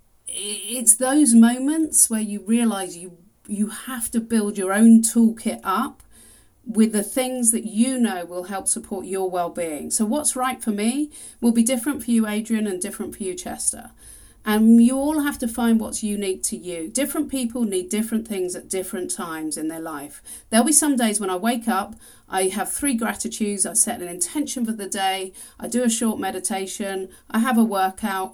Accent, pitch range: British, 185-230 Hz